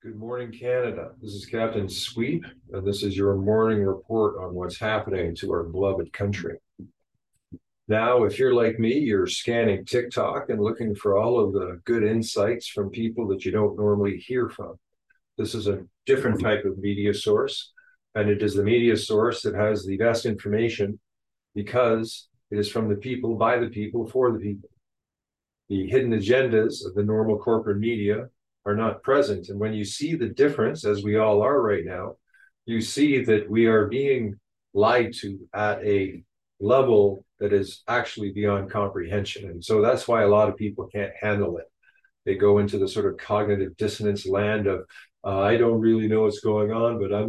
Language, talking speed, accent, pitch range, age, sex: English, 185 wpm, American, 100-120 Hz, 50-69, male